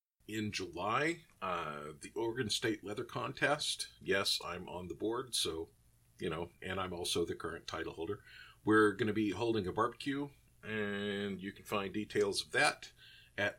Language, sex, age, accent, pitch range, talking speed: English, male, 50-69, American, 95-120 Hz, 170 wpm